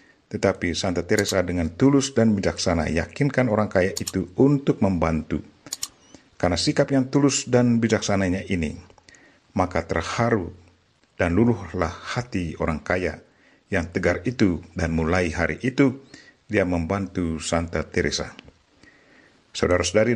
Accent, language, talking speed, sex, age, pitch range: native, Indonesian, 115 wpm, male, 50-69, 85-115 Hz